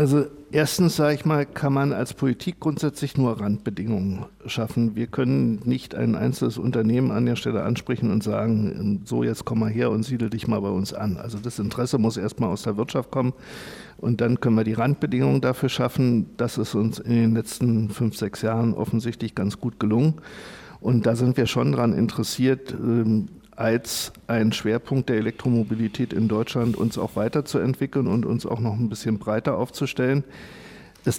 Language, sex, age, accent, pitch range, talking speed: German, male, 50-69, German, 110-130 Hz, 180 wpm